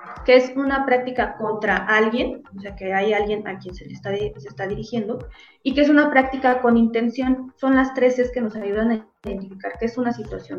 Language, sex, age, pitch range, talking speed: Spanish, female, 20-39, 210-260 Hz, 220 wpm